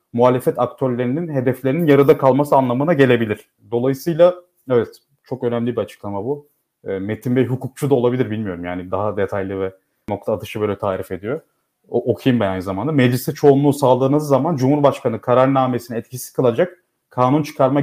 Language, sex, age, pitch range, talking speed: Turkish, male, 30-49, 115-145 Hz, 150 wpm